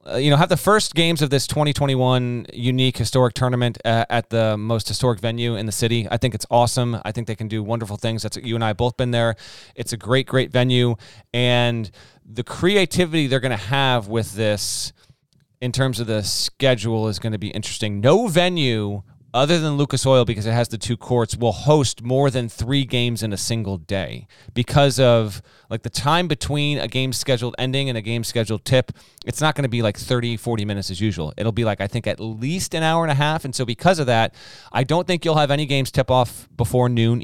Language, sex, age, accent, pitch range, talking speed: English, male, 30-49, American, 115-140 Hz, 225 wpm